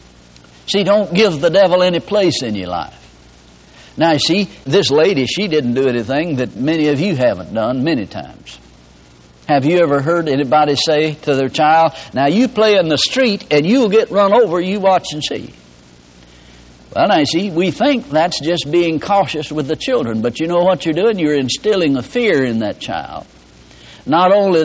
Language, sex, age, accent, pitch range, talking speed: English, male, 60-79, American, 120-185 Hz, 190 wpm